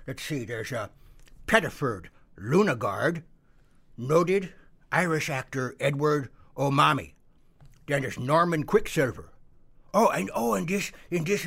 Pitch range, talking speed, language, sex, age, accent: 130-165 Hz, 110 wpm, English, male, 60-79, American